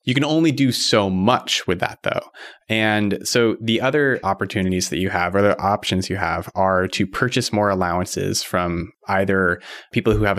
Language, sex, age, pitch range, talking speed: English, male, 20-39, 95-110 Hz, 185 wpm